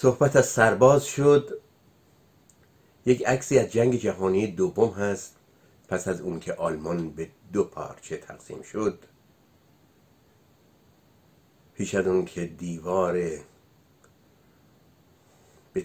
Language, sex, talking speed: Persian, male, 100 wpm